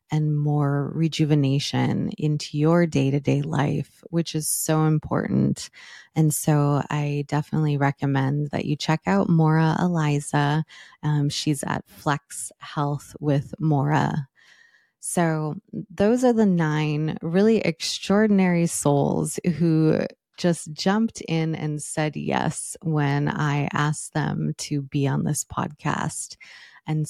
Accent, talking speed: American, 125 wpm